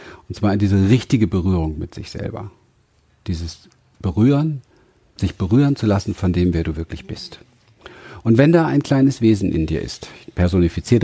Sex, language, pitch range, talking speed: male, German, 95-130 Hz, 170 wpm